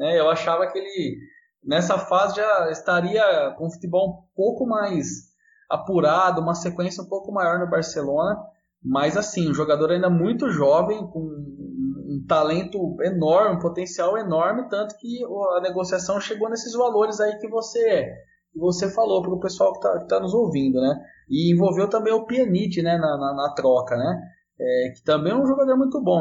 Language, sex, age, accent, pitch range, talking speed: Portuguese, male, 20-39, Brazilian, 165-230 Hz, 175 wpm